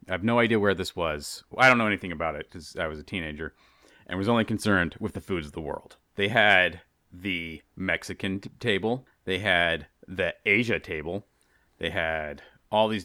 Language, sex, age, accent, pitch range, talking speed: English, male, 30-49, American, 90-110 Hz, 200 wpm